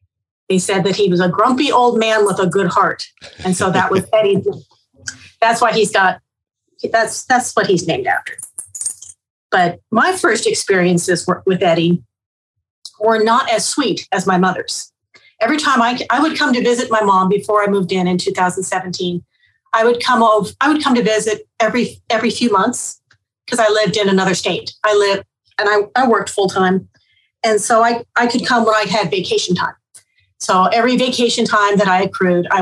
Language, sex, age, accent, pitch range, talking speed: English, female, 40-59, American, 185-230 Hz, 190 wpm